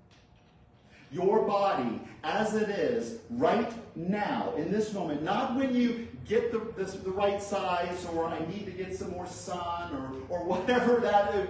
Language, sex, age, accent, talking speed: English, male, 40-59, American, 165 wpm